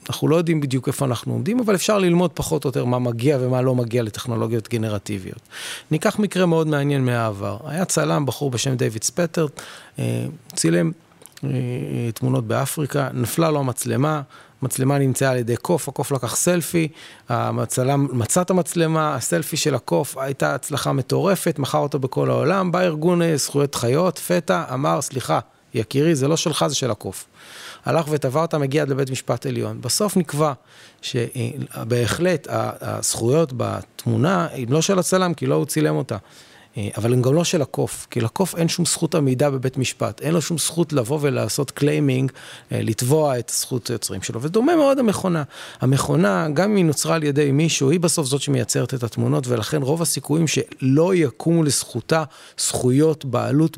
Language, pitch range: Hebrew, 125-165 Hz